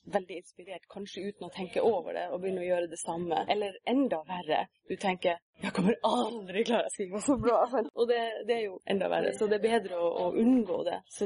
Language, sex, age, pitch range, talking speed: Swedish, female, 30-49, 170-215 Hz, 210 wpm